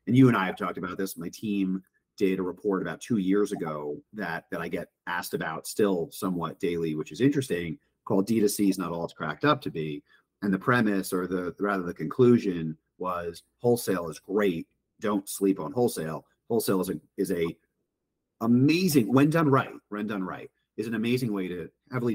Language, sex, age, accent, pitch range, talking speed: English, male, 40-59, American, 80-110 Hz, 195 wpm